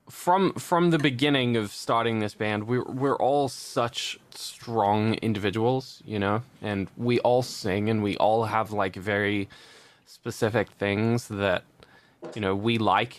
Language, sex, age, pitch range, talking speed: English, male, 20-39, 105-130 Hz, 150 wpm